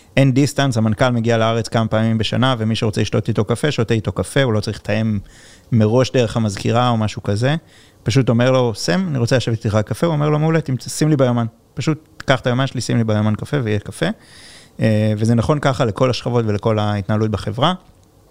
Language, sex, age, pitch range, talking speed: Hebrew, male, 30-49, 105-130 Hz, 205 wpm